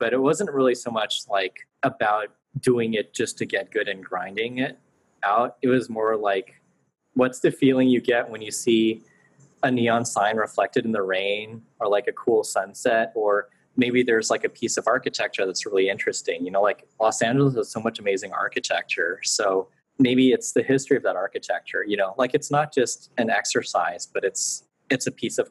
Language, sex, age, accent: English, male, 20-39, American